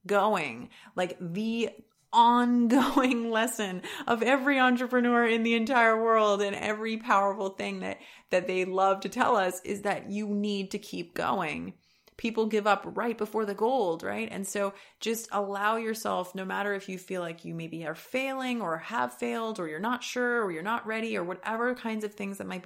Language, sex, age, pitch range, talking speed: English, female, 30-49, 180-225 Hz, 190 wpm